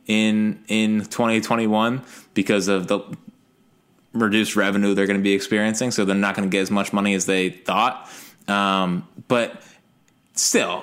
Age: 20-39